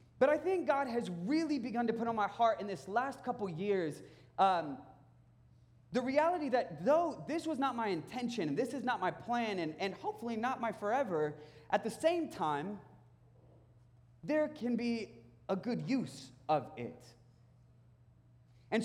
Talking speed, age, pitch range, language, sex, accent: 165 wpm, 20-39, 150-235 Hz, English, male, American